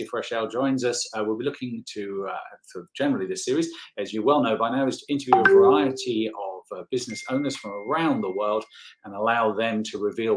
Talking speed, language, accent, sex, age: 210 wpm, English, British, male, 40-59